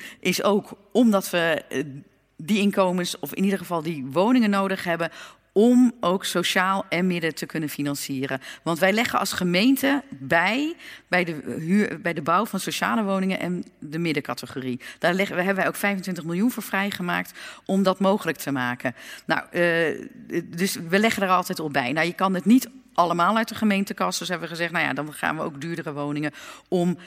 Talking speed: 180 wpm